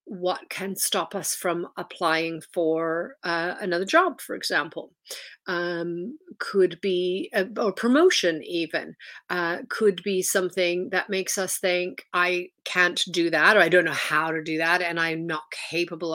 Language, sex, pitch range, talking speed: English, female, 175-210 Hz, 160 wpm